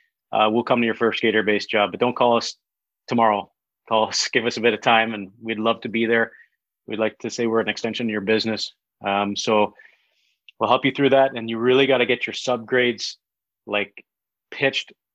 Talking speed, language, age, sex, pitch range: 220 wpm, English, 30-49, male, 110-125 Hz